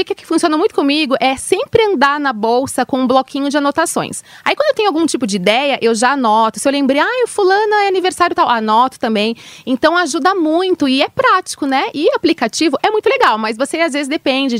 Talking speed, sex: 225 wpm, female